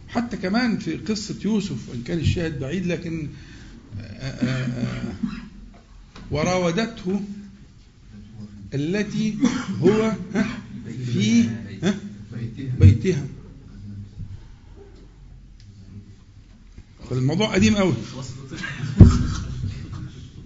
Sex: male